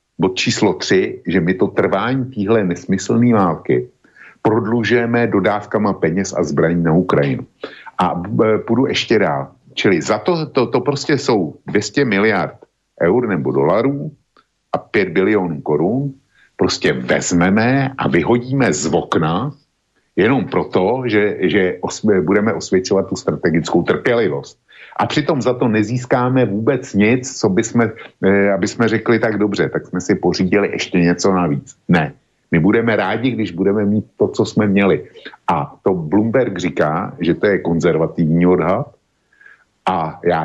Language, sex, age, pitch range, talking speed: Slovak, male, 50-69, 90-125 Hz, 145 wpm